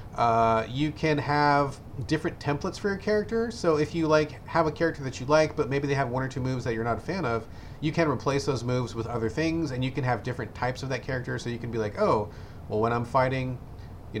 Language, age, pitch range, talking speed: English, 30-49, 110-155 Hz, 260 wpm